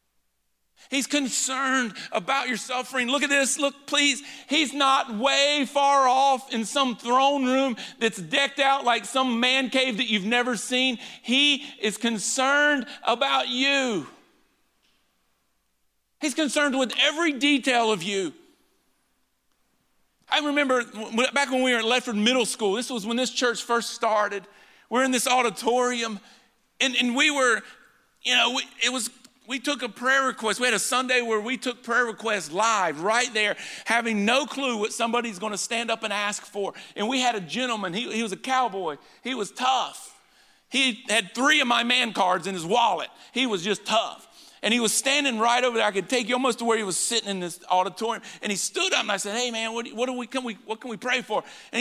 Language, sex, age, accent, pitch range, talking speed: English, male, 50-69, American, 225-265 Hz, 190 wpm